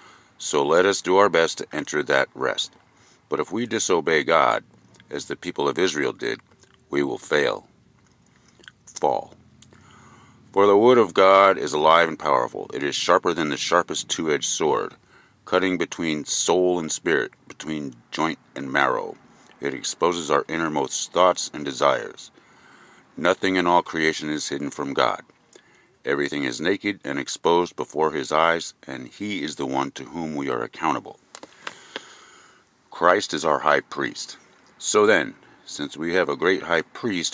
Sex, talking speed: male, 155 wpm